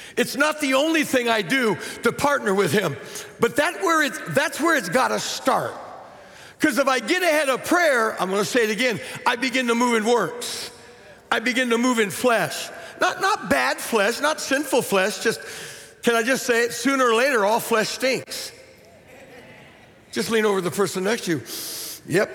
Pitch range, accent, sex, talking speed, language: 200-275 Hz, American, male, 185 wpm, English